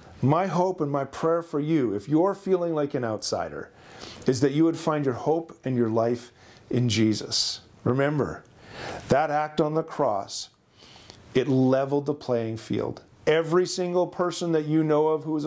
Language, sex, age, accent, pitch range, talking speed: English, male, 40-59, American, 120-160 Hz, 175 wpm